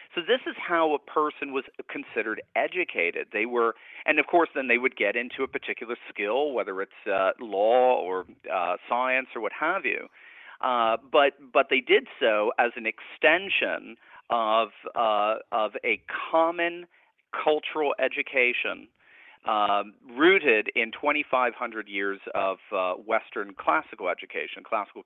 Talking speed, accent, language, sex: 150 wpm, American, English, male